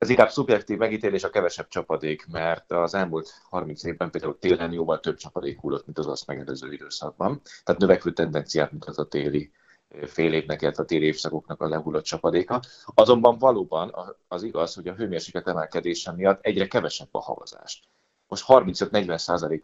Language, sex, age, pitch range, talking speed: Hungarian, male, 30-49, 80-105 Hz, 165 wpm